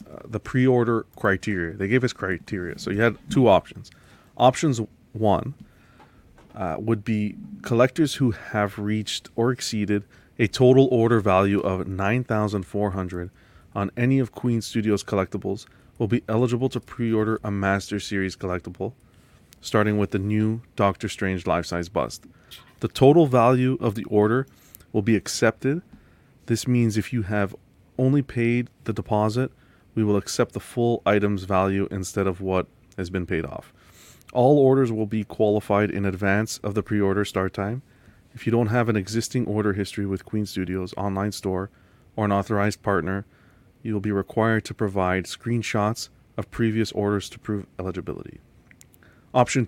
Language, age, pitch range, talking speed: English, 30-49, 100-120 Hz, 155 wpm